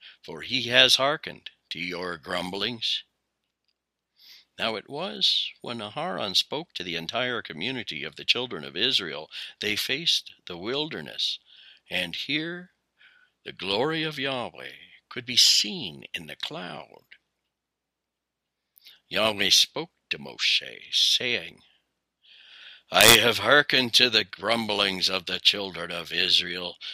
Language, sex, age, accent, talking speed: English, male, 60-79, American, 120 wpm